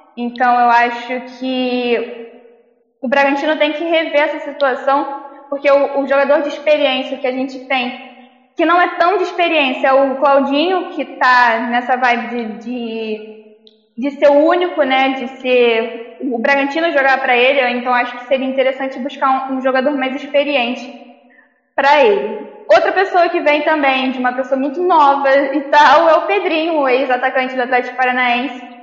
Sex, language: female, Portuguese